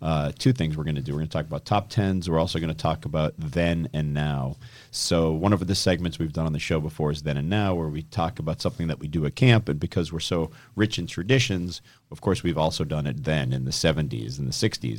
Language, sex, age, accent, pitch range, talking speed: English, male, 40-59, American, 75-95 Hz, 270 wpm